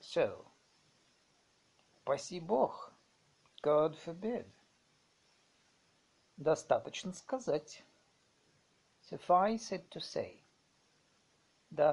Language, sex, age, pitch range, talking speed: Russian, male, 50-69, 165-215 Hz, 55 wpm